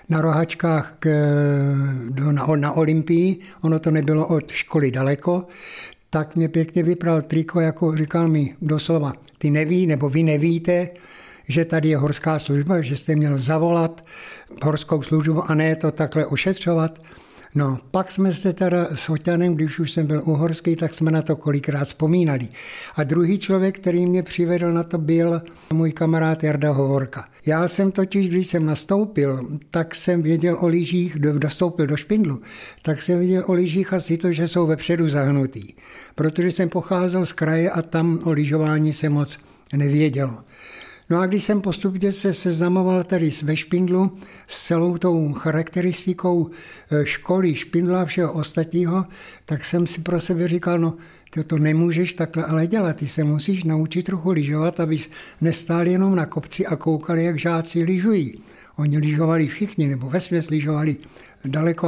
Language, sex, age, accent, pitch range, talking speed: Czech, male, 60-79, native, 155-175 Hz, 160 wpm